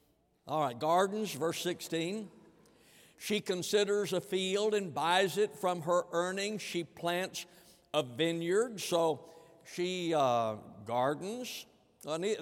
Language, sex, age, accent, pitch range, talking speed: English, male, 60-79, American, 155-205 Hz, 115 wpm